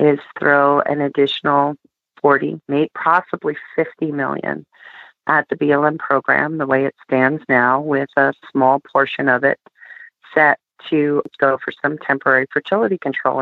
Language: English